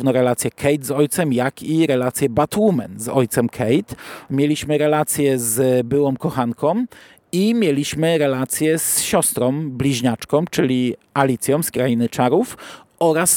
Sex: male